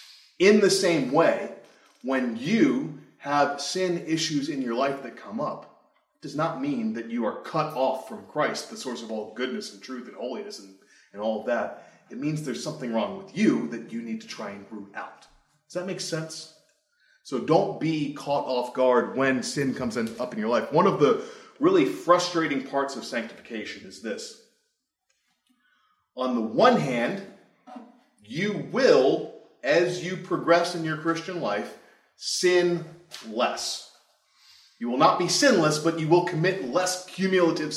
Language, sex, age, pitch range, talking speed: English, male, 30-49, 140-190 Hz, 170 wpm